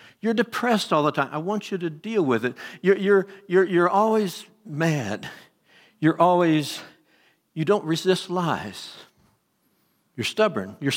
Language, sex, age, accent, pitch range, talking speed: English, male, 60-79, American, 135-175 Hz, 150 wpm